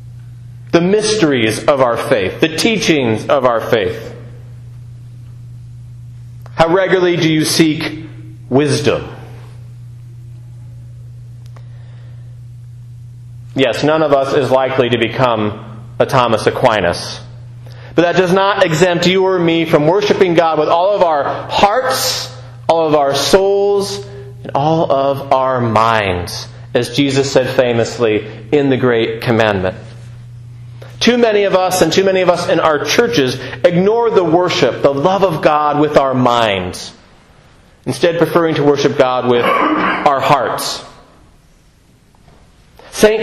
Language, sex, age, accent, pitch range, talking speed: English, male, 40-59, American, 120-170 Hz, 125 wpm